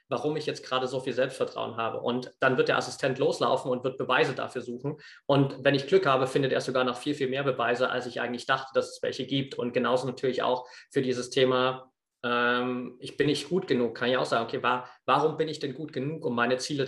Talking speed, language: 240 wpm, German